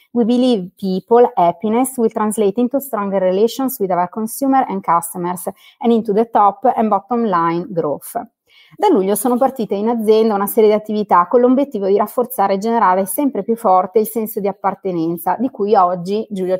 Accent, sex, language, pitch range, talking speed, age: native, female, Italian, 185-235 Hz, 175 wpm, 30-49